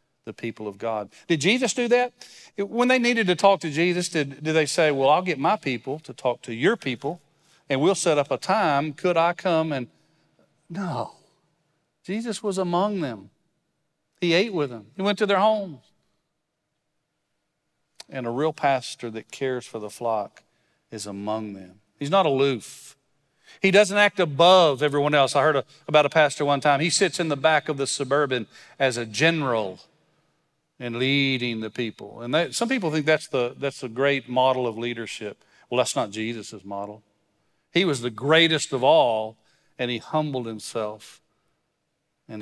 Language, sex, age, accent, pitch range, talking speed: English, male, 40-59, American, 120-160 Hz, 175 wpm